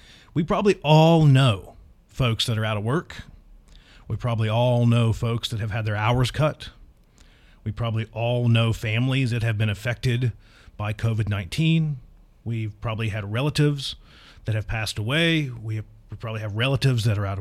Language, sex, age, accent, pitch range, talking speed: English, male, 40-59, American, 105-140 Hz, 165 wpm